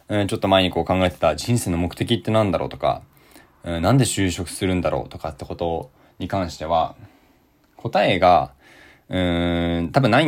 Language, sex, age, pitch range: Japanese, male, 20-39, 85-120 Hz